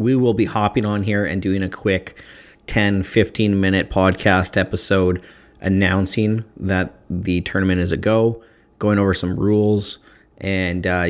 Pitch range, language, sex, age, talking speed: 90-105 Hz, English, male, 40-59, 150 wpm